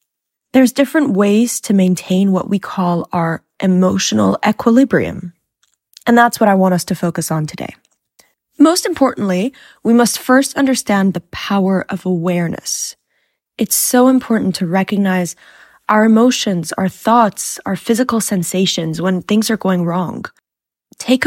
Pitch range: 180-230 Hz